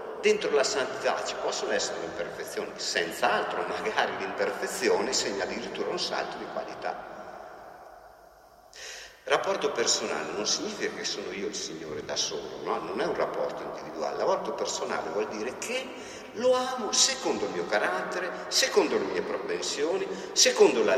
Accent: native